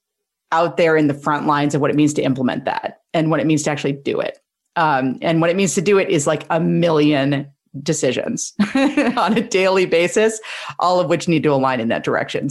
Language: English